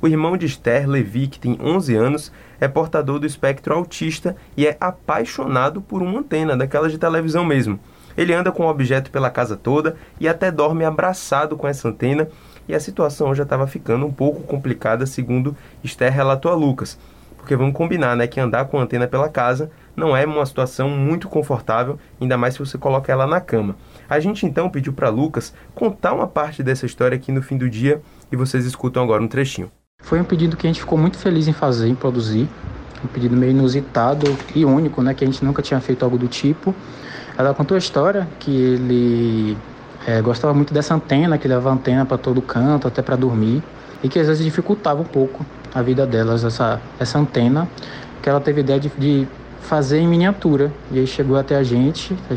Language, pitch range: Portuguese, 125-155 Hz